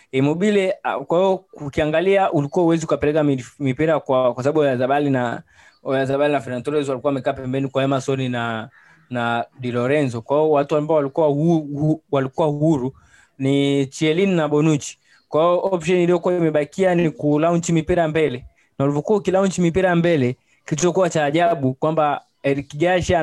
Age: 20-39